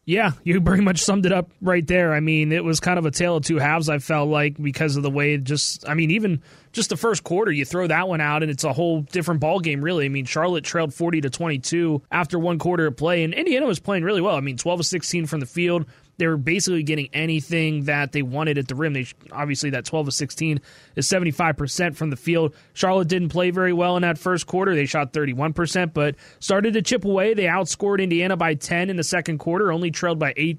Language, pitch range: English, 150-180 Hz